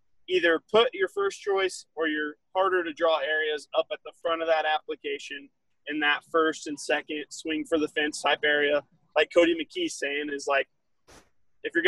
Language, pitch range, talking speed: English, 155-225 Hz, 185 wpm